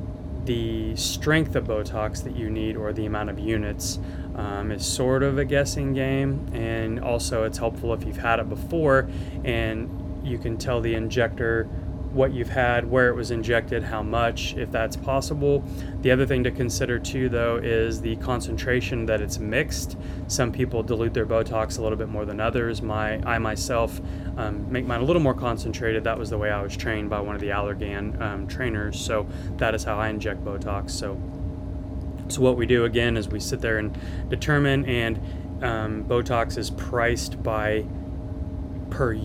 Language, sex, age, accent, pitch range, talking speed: English, male, 20-39, American, 90-120 Hz, 185 wpm